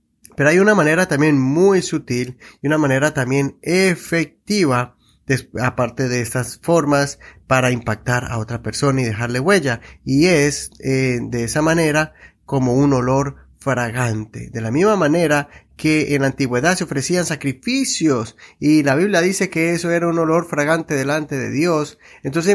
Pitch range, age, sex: 125-155 Hz, 30-49, male